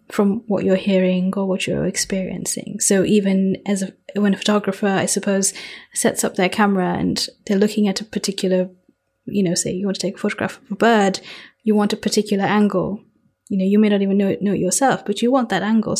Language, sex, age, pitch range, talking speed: English, female, 20-39, 195-220 Hz, 225 wpm